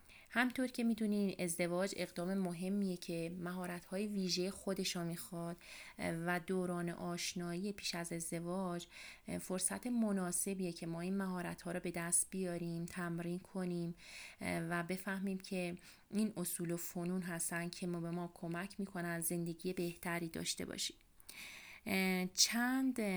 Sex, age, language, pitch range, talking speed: female, 30-49, Persian, 170-195 Hz, 125 wpm